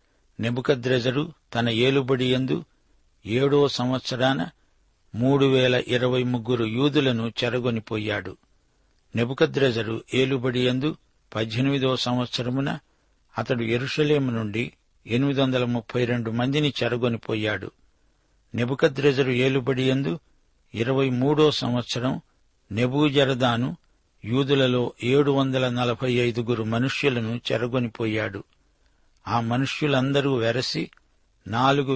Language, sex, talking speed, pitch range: Telugu, male, 70 wpm, 115-135 Hz